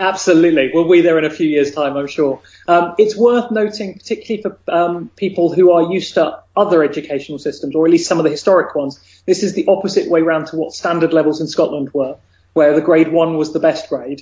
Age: 30-49